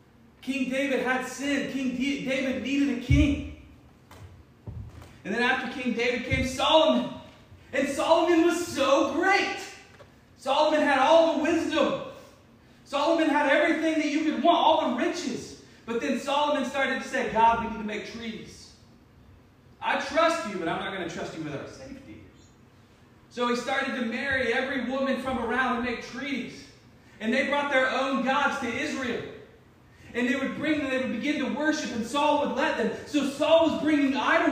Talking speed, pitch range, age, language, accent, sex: 175 wpm, 235-295 Hz, 30-49, English, American, male